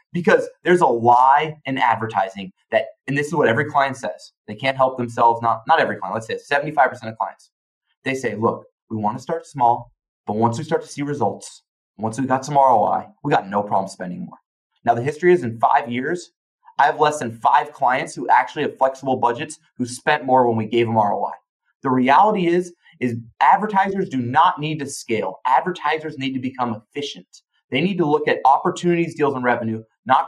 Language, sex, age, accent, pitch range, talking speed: English, male, 30-49, American, 115-155 Hz, 205 wpm